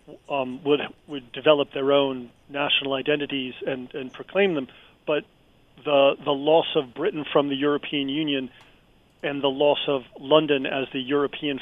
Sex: male